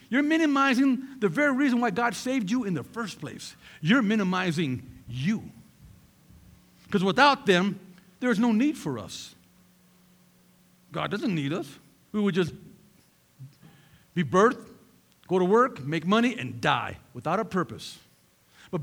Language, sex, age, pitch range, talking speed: English, male, 50-69, 155-240 Hz, 140 wpm